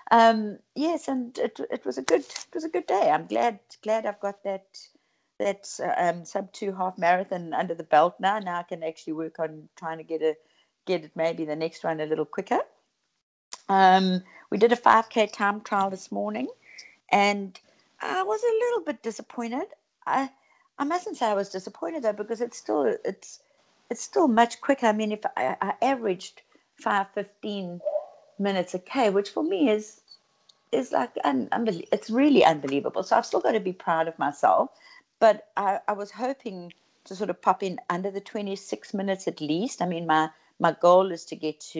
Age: 60-79